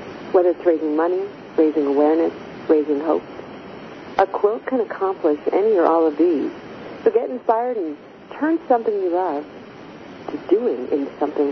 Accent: American